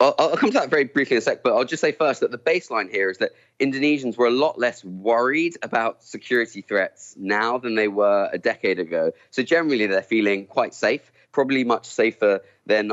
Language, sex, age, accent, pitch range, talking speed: English, male, 20-39, British, 95-120 Hz, 220 wpm